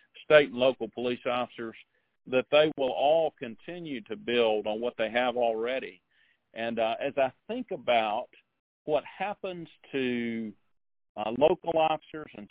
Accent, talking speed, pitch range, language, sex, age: American, 145 wpm, 115-140 Hz, English, male, 50-69